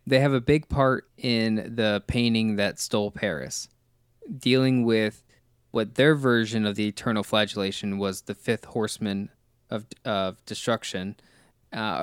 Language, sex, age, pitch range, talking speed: English, male, 20-39, 105-125 Hz, 140 wpm